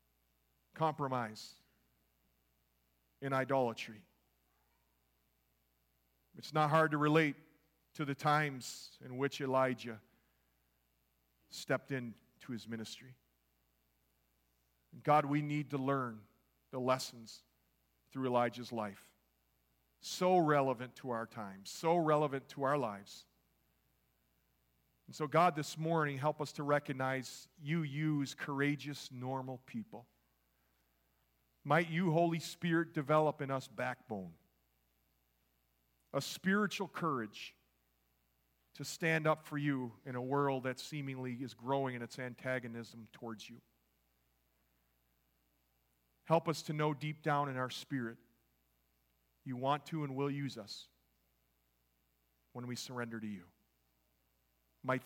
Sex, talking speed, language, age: male, 110 wpm, English, 40-59